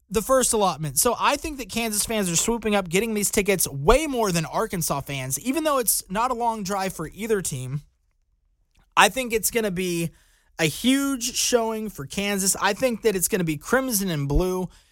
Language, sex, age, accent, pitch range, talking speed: English, male, 20-39, American, 160-200 Hz, 205 wpm